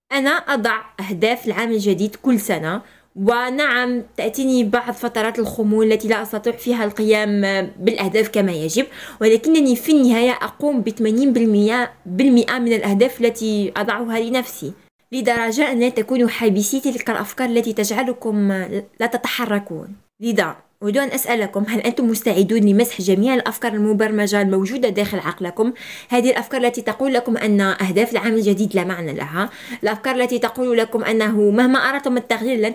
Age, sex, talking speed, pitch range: 20-39, female, 140 wpm, 205-245 Hz